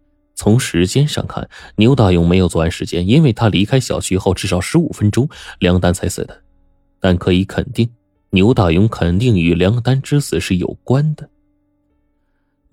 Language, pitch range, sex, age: Chinese, 90-105 Hz, male, 20-39